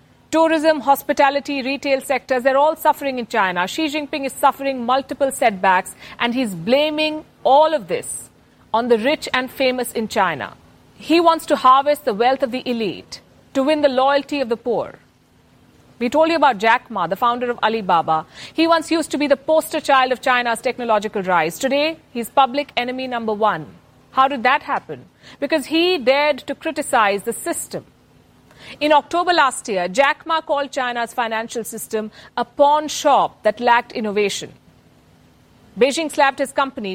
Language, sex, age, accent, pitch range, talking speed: English, female, 50-69, Indian, 230-290 Hz, 165 wpm